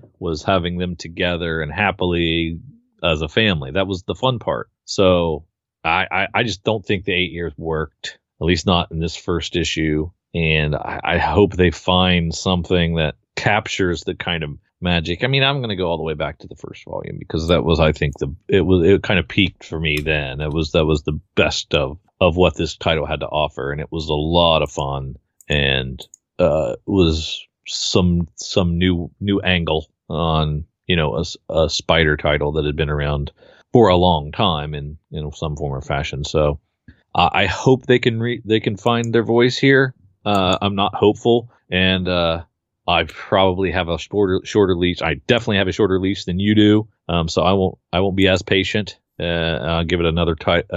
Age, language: 40-59, English